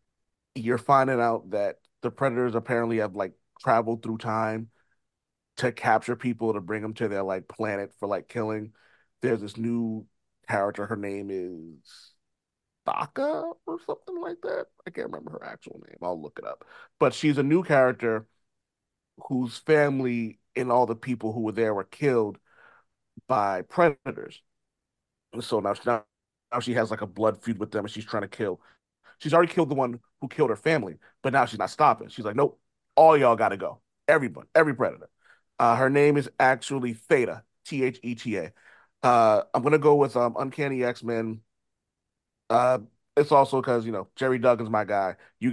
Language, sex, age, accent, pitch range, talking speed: English, male, 30-49, American, 105-130 Hz, 175 wpm